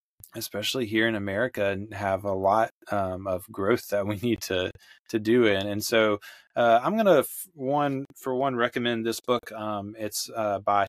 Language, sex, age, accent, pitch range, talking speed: English, male, 20-39, American, 105-120 Hz, 195 wpm